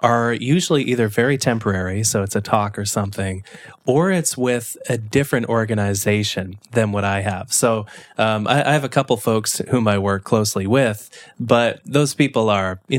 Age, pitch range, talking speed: 20-39, 105-135 Hz, 190 wpm